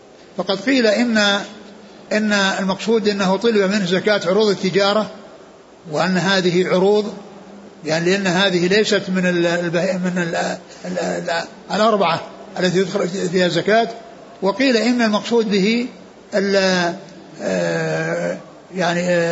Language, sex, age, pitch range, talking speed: Arabic, male, 60-79, 175-210 Hz, 95 wpm